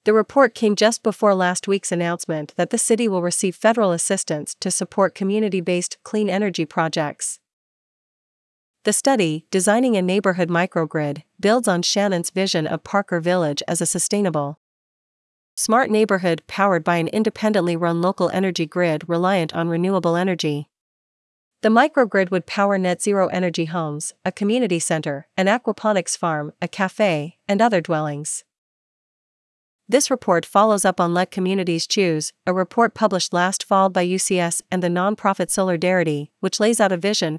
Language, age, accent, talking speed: English, 40-59, American, 150 wpm